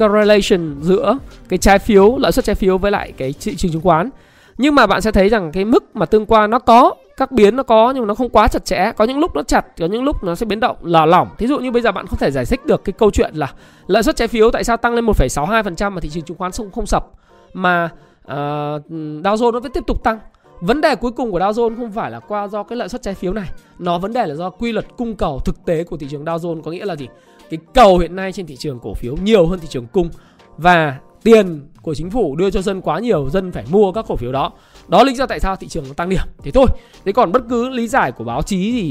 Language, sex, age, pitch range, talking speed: Vietnamese, male, 20-39, 165-225 Hz, 280 wpm